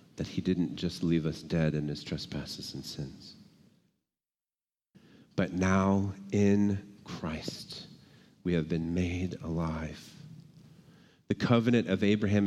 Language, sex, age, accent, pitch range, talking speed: English, male, 40-59, American, 90-110 Hz, 115 wpm